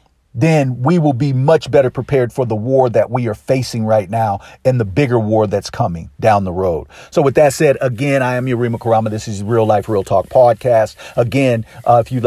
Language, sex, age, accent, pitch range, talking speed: English, male, 50-69, American, 105-120 Hz, 220 wpm